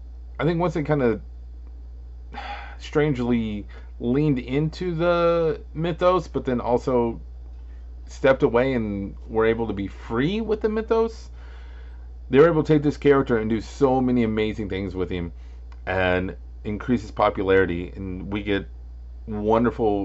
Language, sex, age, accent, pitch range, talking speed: English, male, 30-49, American, 90-130 Hz, 145 wpm